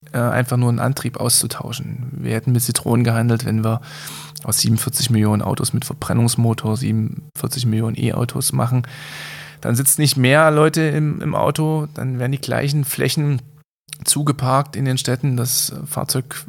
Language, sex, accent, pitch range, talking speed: German, male, German, 125-150 Hz, 150 wpm